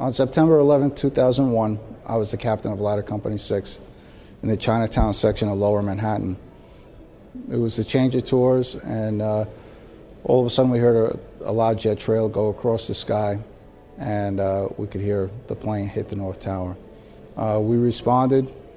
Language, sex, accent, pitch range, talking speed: English, male, American, 100-120 Hz, 180 wpm